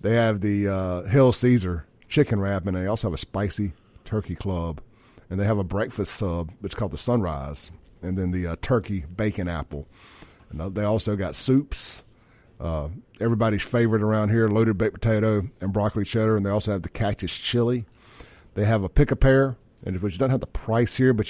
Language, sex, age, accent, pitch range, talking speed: English, male, 40-59, American, 95-120 Hz, 190 wpm